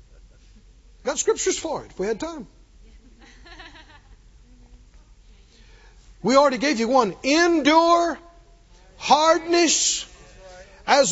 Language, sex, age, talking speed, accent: English, male, 50-69, 85 wpm, American